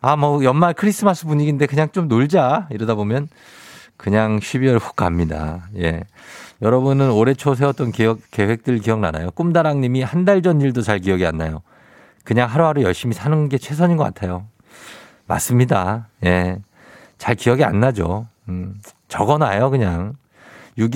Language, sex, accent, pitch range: Korean, male, native, 100-150 Hz